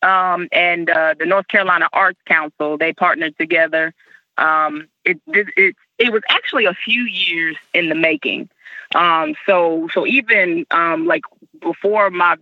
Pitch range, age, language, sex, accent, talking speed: 165-200 Hz, 20-39, English, female, American, 155 wpm